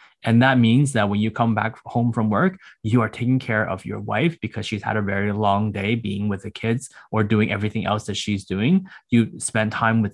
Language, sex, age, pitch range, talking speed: English, male, 20-39, 110-130 Hz, 235 wpm